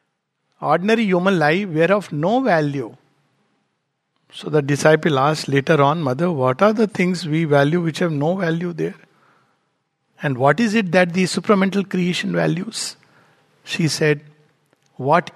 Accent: Indian